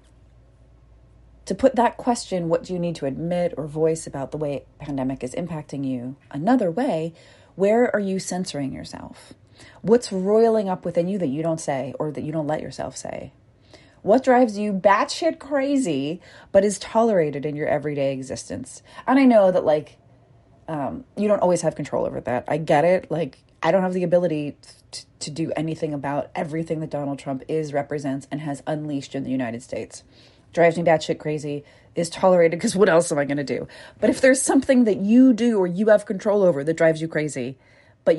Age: 30-49